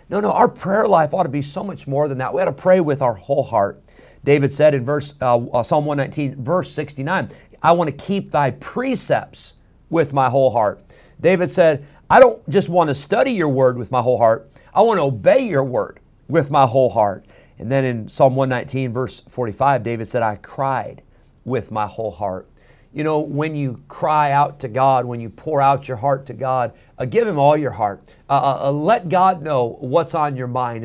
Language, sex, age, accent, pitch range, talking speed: English, male, 50-69, American, 125-150 Hz, 215 wpm